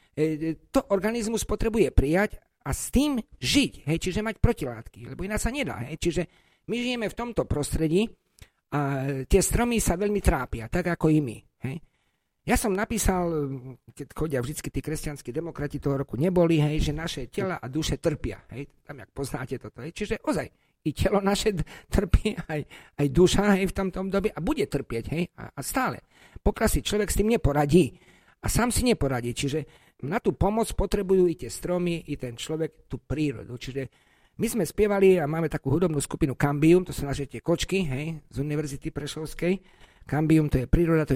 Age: 50-69